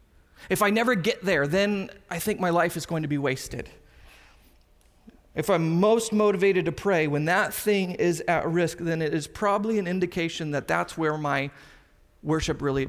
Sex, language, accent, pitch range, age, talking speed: male, English, American, 160-205 Hz, 30-49, 180 wpm